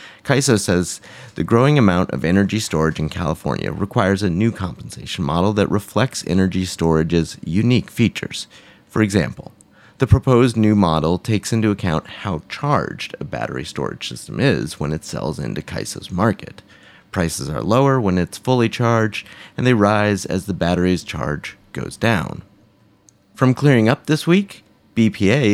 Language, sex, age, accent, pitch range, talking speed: English, male, 30-49, American, 85-115 Hz, 155 wpm